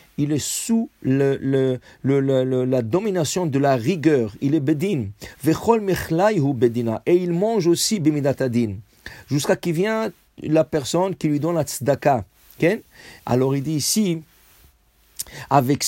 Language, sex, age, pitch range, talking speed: English, male, 50-69, 125-175 Hz, 135 wpm